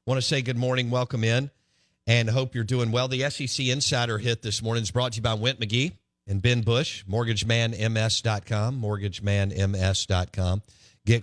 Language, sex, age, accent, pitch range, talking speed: English, male, 50-69, American, 90-120 Hz, 165 wpm